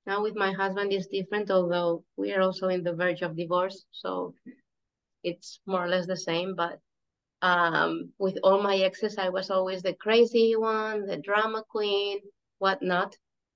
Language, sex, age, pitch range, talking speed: English, female, 20-39, 170-200 Hz, 170 wpm